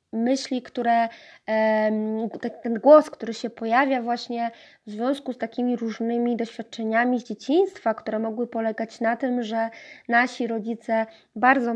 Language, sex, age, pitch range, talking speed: Polish, female, 20-39, 220-250 Hz, 130 wpm